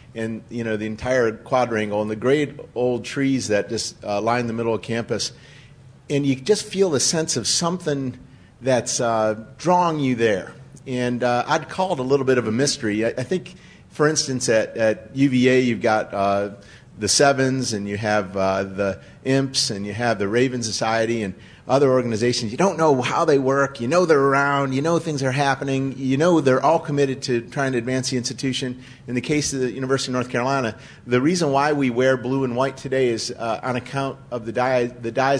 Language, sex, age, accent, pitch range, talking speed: English, male, 50-69, American, 115-135 Hz, 210 wpm